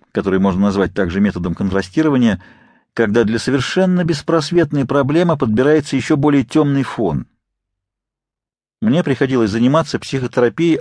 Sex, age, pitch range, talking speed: male, 50-69, 110-155 Hz, 110 wpm